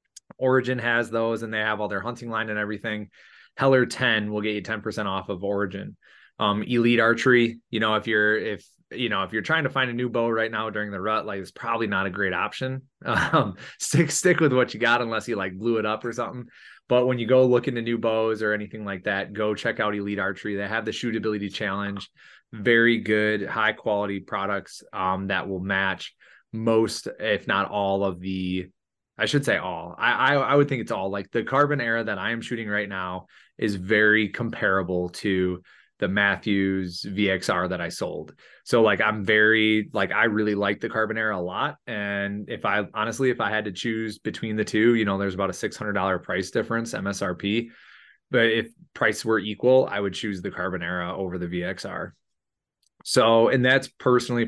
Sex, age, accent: male, 20-39, American